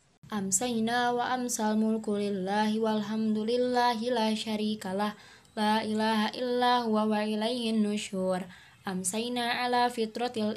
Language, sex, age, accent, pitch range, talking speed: Indonesian, female, 20-39, native, 205-220 Hz, 100 wpm